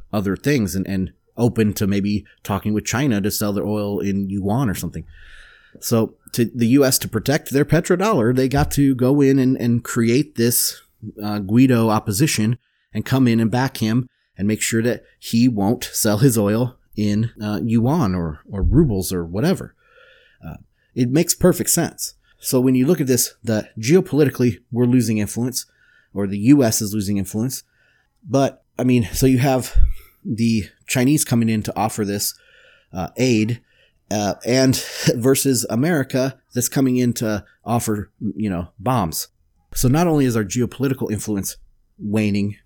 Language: English